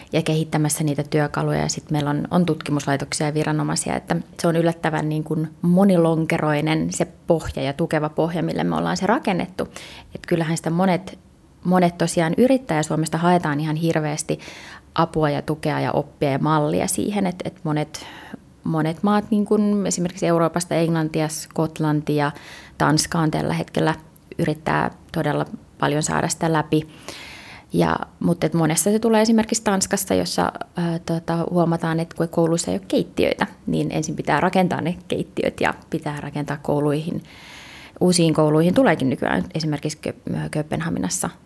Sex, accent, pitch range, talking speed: female, native, 150-175 Hz, 145 wpm